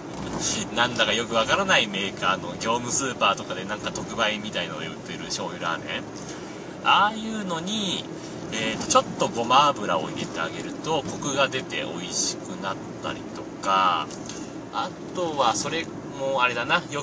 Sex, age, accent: male, 30-49, native